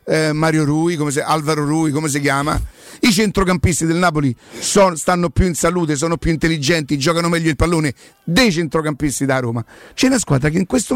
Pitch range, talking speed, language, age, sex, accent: 145-195 Hz, 190 wpm, Italian, 50-69, male, native